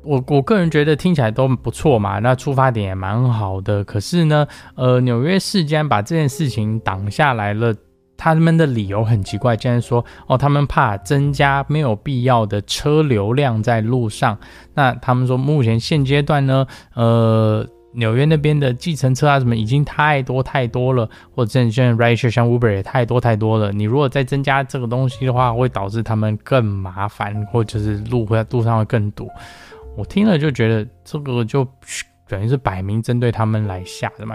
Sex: male